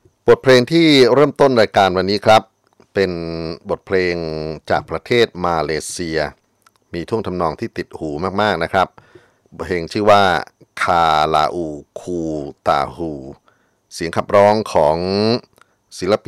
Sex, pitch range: male, 75-95 Hz